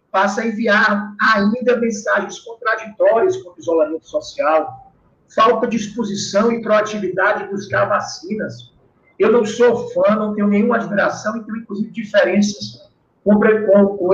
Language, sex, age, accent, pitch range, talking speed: Portuguese, male, 50-69, Brazilian, 195-235 Hz, 130 wpm